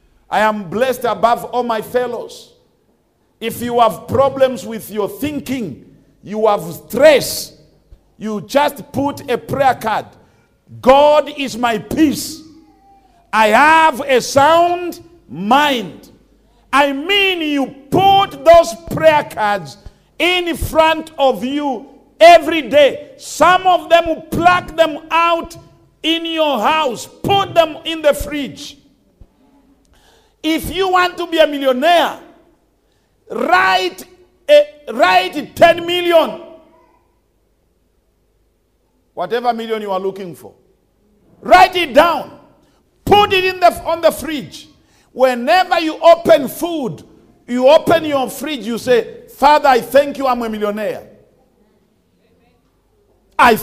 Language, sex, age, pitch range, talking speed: English, male, 50-69, 245-335 Hz, 115 wpm